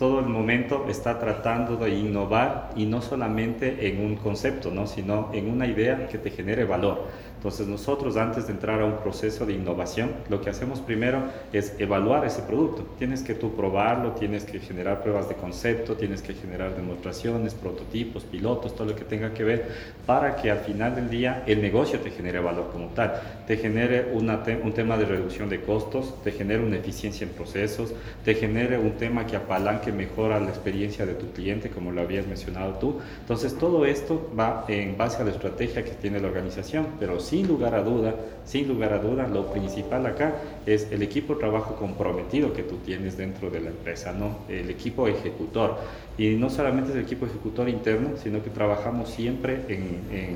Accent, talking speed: Mexican, 195 wpm